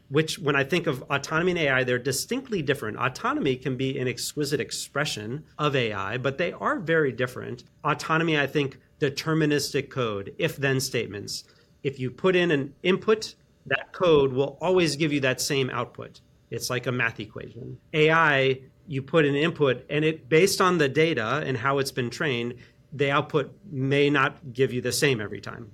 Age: 40-59